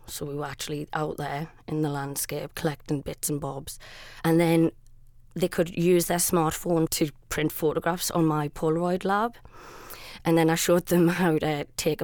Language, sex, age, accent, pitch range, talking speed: English, female, 20-39, British, 150-175 Hz, 175 wpm